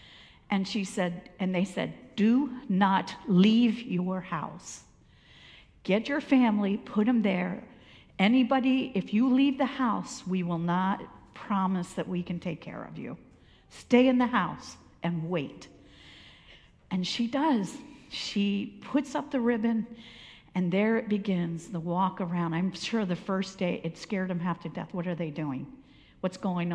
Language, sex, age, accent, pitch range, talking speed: English, female, 50-69, American, 175-225 Hz, 160 wpm